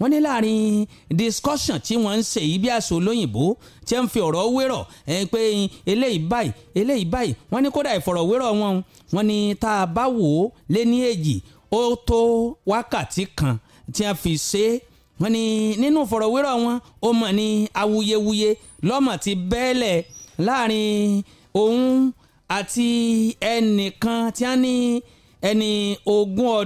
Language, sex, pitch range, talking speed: English, male, 195-245 Hz, 135 wpm